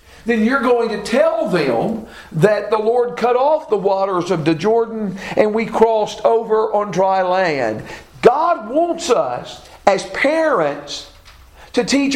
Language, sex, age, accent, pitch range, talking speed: English, male, 50-69, American, 210-290 Hz, 150 wpm